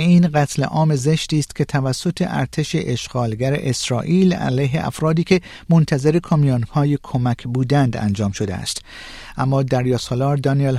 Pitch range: 125-170 Hz